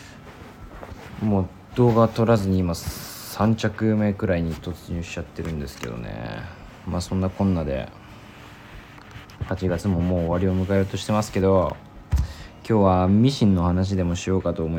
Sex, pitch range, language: male, 90-110 Hz, Japanese